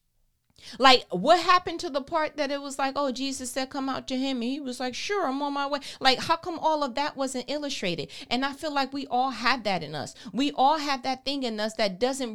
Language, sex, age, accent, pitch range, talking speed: English, female, 30-49, American, 235-300 Hz, 260 wpm